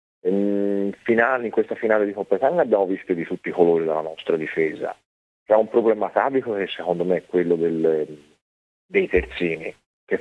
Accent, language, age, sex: native, Italian, 40-59, male